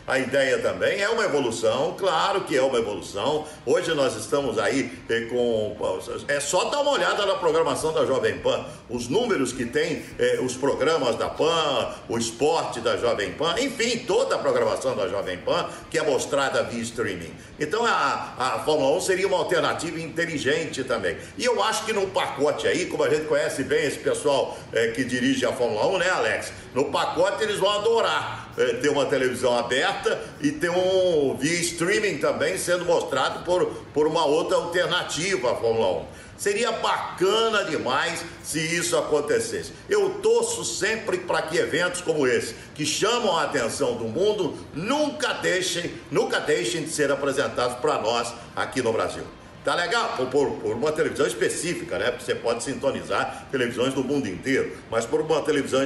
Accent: Brazilian